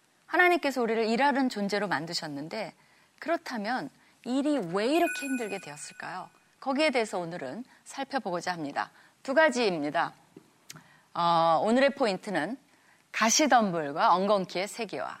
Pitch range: 175-280 Hz